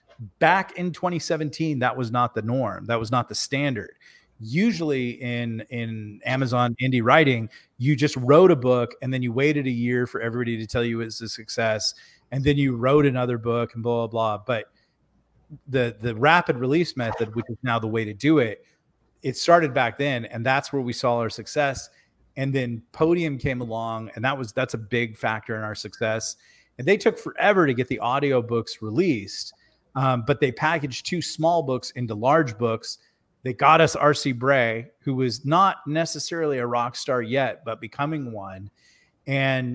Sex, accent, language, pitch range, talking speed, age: male, American, English, 115-145 Hz, 190 wpm, 30-49